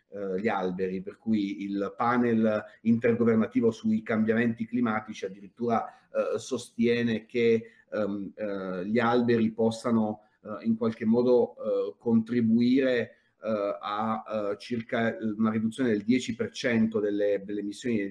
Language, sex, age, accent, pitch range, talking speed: Italian, male, 40-59, native, 105-125 Hz, 95 wpm